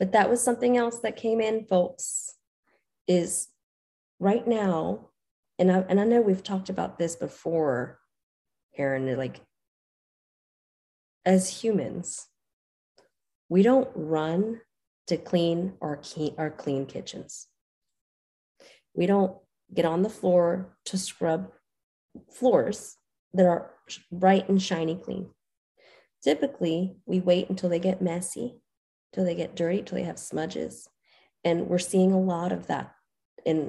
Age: 30-49